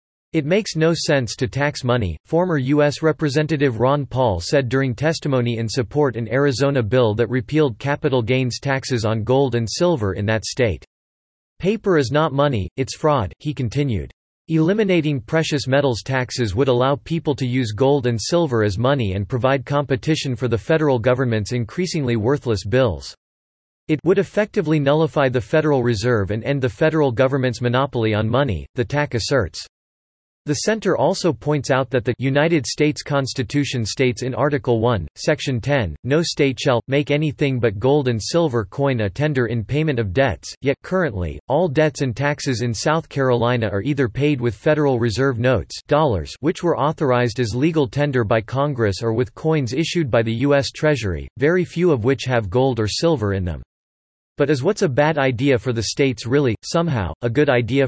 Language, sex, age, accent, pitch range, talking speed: English, male, 40-59, American, 120-150 Hz, 175 wpm